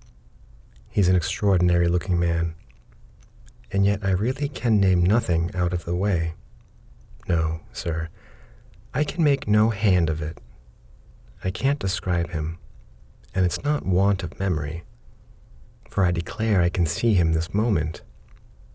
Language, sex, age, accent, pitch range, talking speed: English, male, 40-59, American, 85-105 Hz, 140 wpm